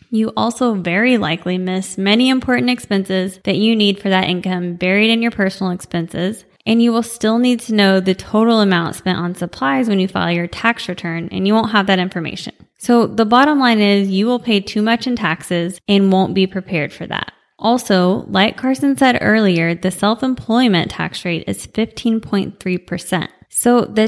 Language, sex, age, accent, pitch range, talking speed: English, female, 20-39, American, 180-225 Hz, 185 wpm